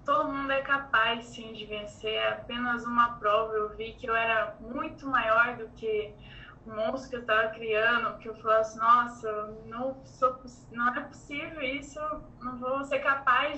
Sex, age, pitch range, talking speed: female, 10-29, 220-250 Hz, 180 wpm